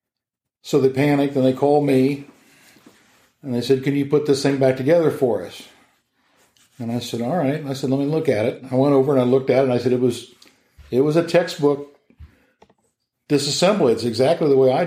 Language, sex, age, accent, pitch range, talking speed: English, male, 60-79, American, 125-140 Hz, 220 wpm